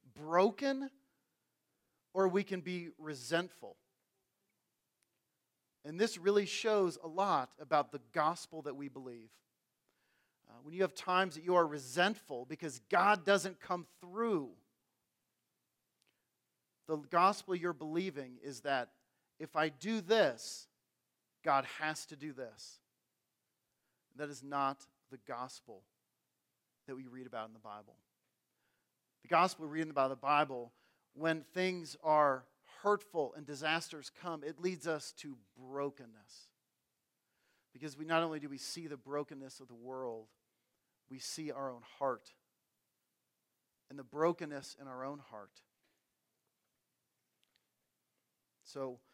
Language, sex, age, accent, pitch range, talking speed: English, male, 40-59, American, 135-175 Hz, 125 wpm